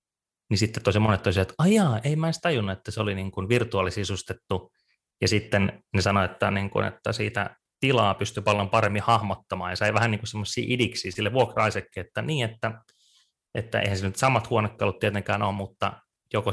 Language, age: Finnish, 30-49